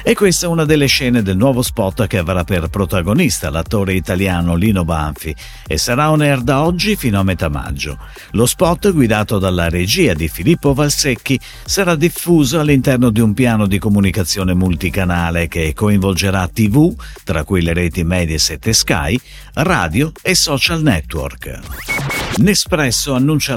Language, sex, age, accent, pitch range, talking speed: Italian, male, 50-69, native, 85-135 Hz, 150 wpm